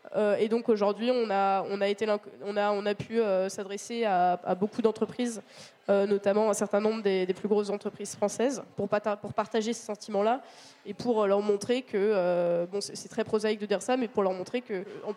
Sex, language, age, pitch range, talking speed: female, French, 20-39, 195-225 Hz, 225 wpm